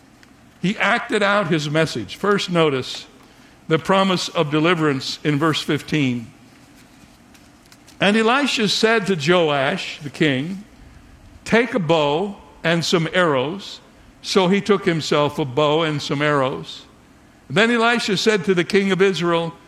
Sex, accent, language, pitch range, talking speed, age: male, American, English, 160-205 Hz, 135 wpm, 60-79